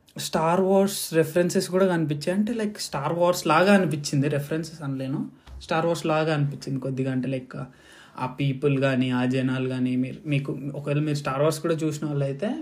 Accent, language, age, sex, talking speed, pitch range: native, Telugu, 20-39, male, 160 wpm, 140-180 Hz